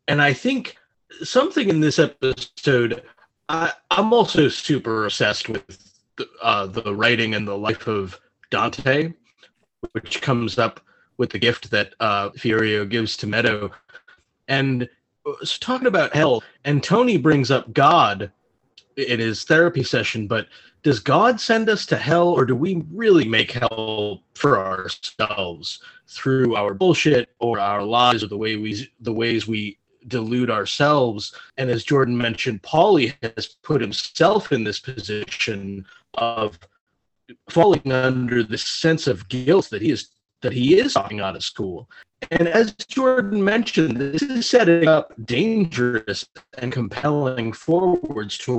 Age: 30-49